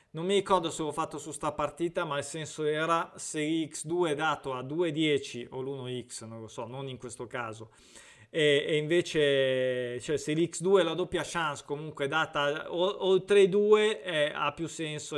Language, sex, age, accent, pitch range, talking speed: Italian, male, 20-39, native, 140-170 Hz, 190 wpm